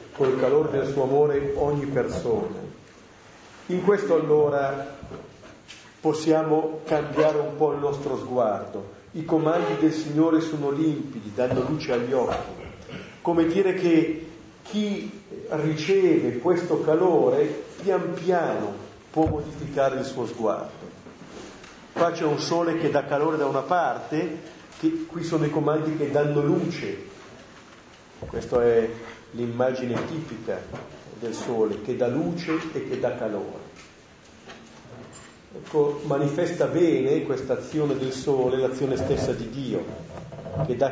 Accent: native